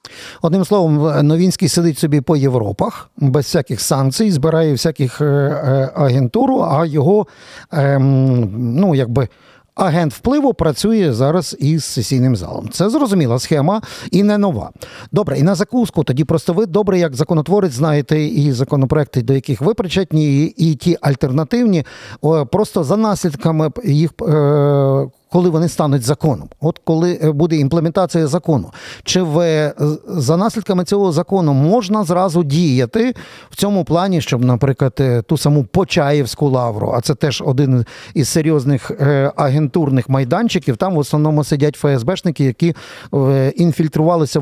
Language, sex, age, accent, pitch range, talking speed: Ukrainian, male, 50-69, native, 140-175 Hz, 135 wpm